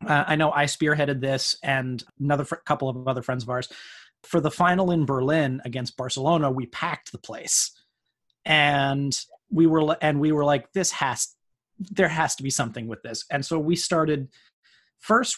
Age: 30-49